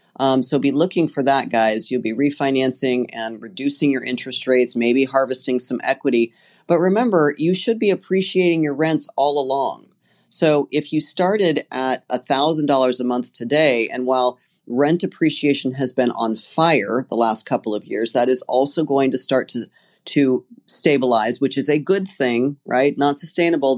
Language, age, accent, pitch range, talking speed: English, 40-59, American, 125-150 Hz, 170 wpm